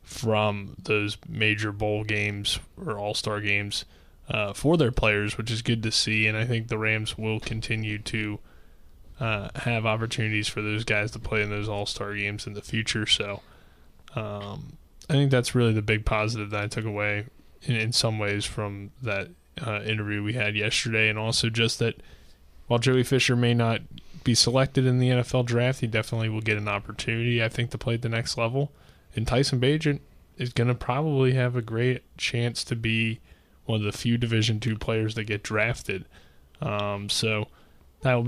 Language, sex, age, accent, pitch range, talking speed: English, male, 20-39, American, 105-120 Hz, 190 wpm